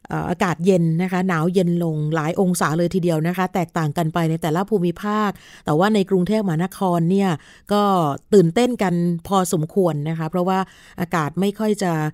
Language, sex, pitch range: Thai, female, 170-205 Hz